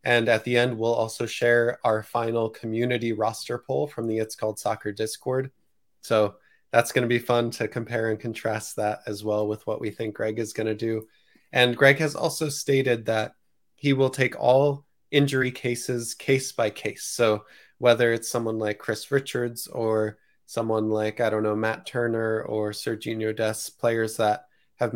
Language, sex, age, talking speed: English, male, 20-39, 185 wpm